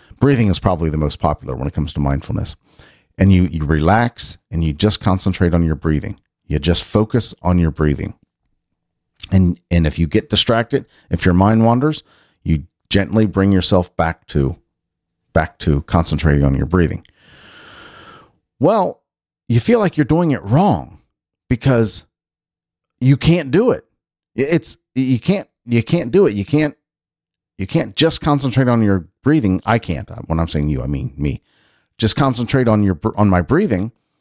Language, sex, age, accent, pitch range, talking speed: English, male, 40-59, American, 85-125 Hz, 165 wpm